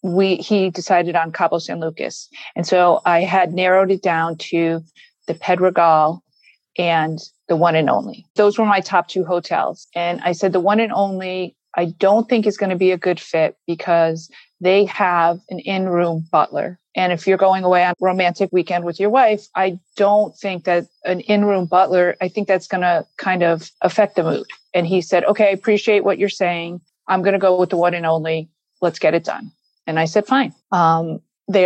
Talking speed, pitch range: 205 wpm, 170-200 Hz